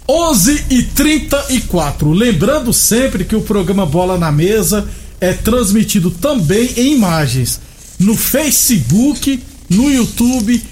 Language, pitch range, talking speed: Portuguese, 175-230 Hz, 100 wpm